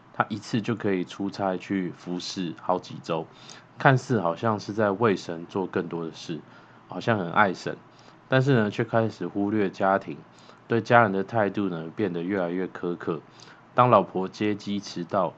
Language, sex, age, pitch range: Chinese, male, 20-39, 90-110 Hz